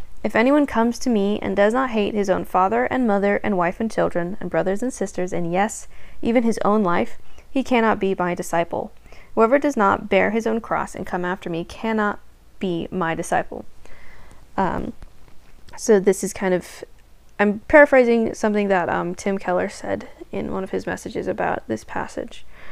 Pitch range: 175-225 Hz